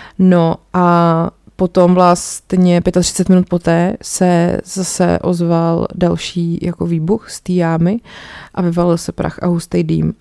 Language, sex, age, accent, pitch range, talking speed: Czech, female, 30-49, native, 170-205 Hz, 125 wpm